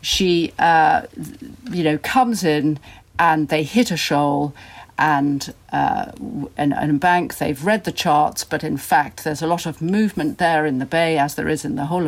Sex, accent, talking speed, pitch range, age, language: female, British, 185 wpm, 145-180 Hz, 50-69, English